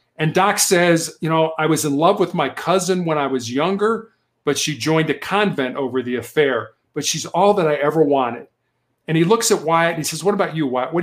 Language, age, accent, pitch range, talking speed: English, 50-69, American, 145-190 Hz, 240 wpm